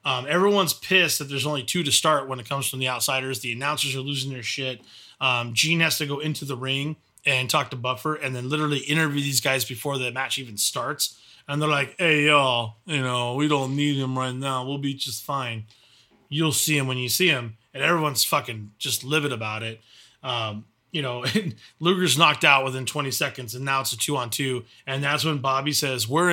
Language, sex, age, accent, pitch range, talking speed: English, male, 20-39, American, 130-155 Hz, 225 wpm